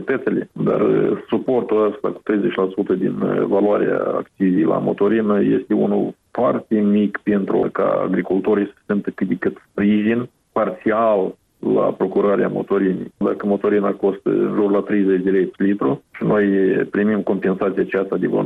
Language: Romanian